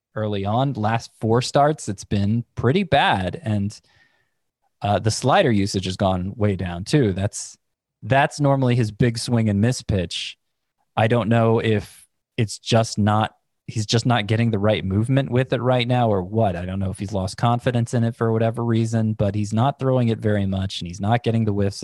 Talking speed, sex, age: 200 wpm, male, 20-39